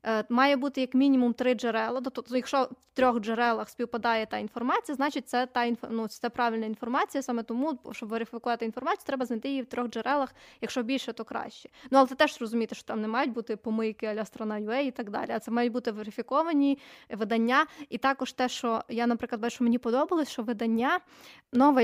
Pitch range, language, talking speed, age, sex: 230-270 Hz, Ukrainian, 195 wpm, 20-39, female